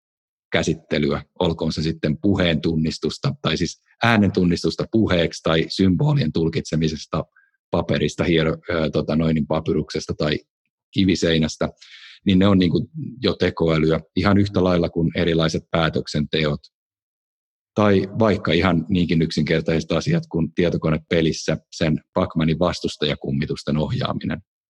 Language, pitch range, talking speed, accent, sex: Finnish, 80-100 Hz, 110 wpm, native, male